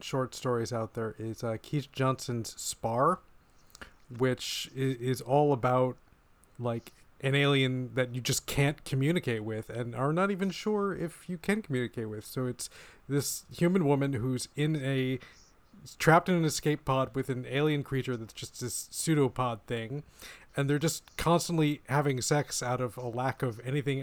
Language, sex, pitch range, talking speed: English, male, 125-170 Hz, 165 wpm